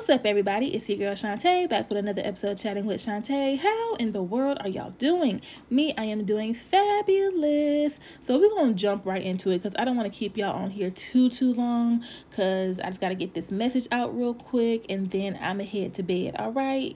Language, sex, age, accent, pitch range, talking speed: English, female, 20-39, American, 195-240 Hz, 240 wpm